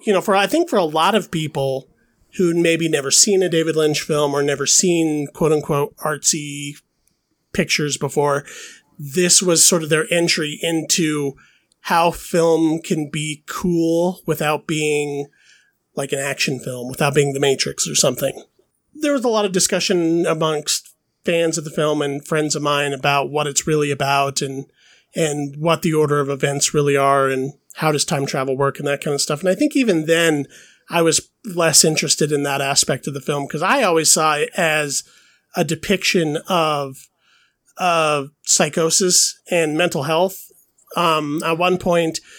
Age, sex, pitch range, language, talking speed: 30-49, male, 145-170 Hz, English, 175 wpm